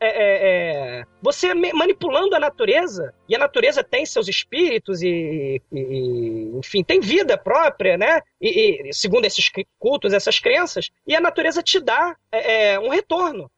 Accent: Brazilian